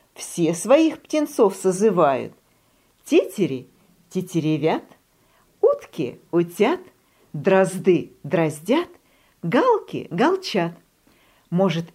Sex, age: female, 50-69